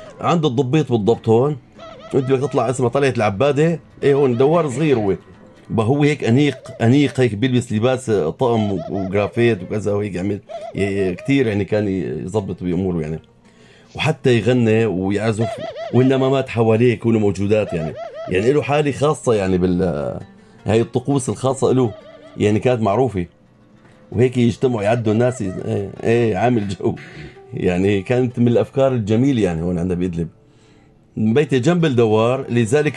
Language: Arabic